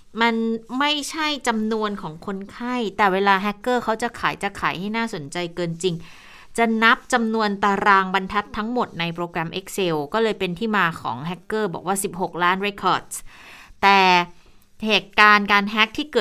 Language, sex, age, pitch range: Thai, female, 20-39, 175-215 Hz